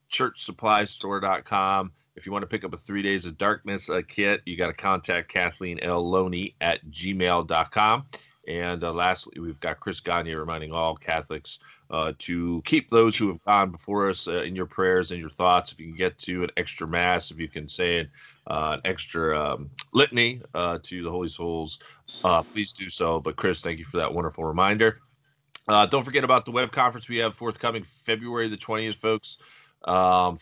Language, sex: English, male